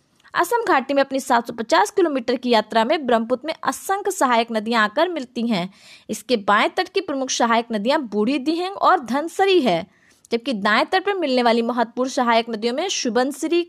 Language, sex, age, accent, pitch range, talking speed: Hindi, female, 20-39, native, 230-345 Hz, 175 wpm